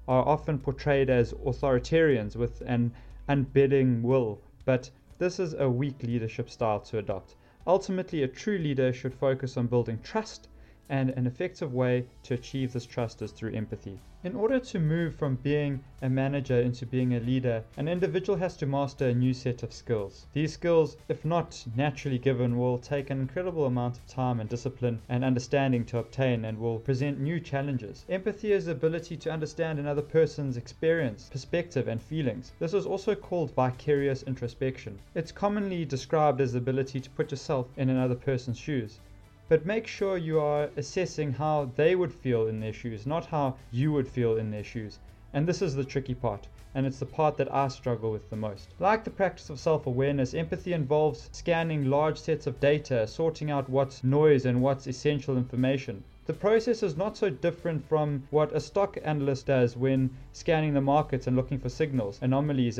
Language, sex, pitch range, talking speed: English, male, 125-155 Hz, 185 wpm